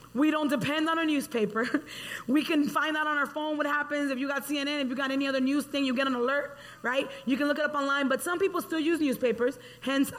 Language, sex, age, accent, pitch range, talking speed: English, female, 20-39, American, 255-310 Hz, 260 wpm